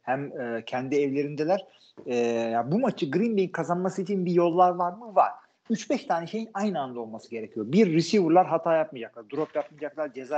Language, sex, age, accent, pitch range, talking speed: Turkish, male, 40-59, native, 145-210 Hz, 180 wpm